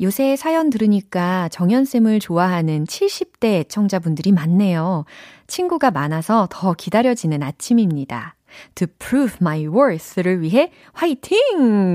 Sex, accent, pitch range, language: female, native, 155-225 Hz, Korean